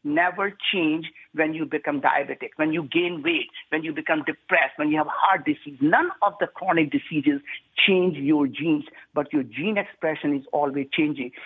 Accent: Indian